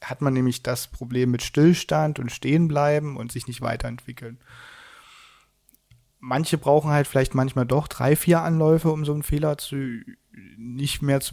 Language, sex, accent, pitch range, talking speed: German, male, German, 125-150 Hz, 155 wpm